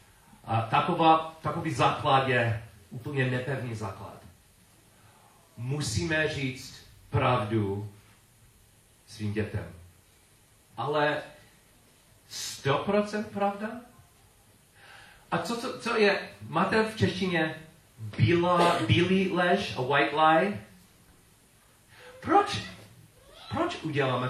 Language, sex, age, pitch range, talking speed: Czech, male, 40-59, 105-150 Hz, 80 wpm